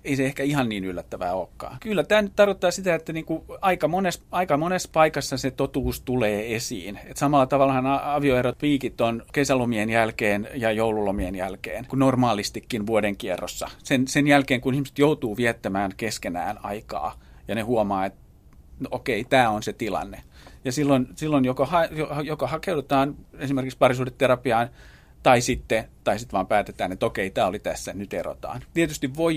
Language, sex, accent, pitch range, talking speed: Finnish, male, native, 115-145 Hz, 160 wpm